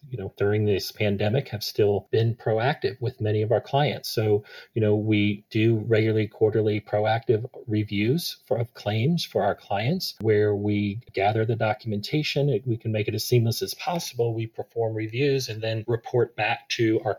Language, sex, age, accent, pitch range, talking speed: English, male, 40-59, American, 105-125 Hz, 175 wpm